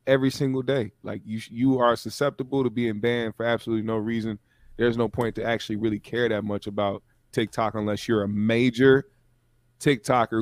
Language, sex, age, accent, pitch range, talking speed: English, male, 20-39, American, 110-125 Hz, 180 wpm